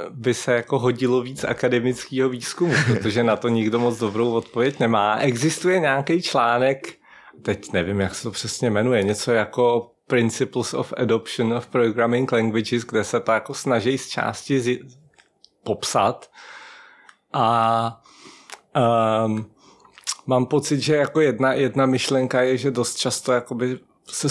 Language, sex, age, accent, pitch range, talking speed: Czech, male, 40-59, native, 115-130 Hz, 140 wpm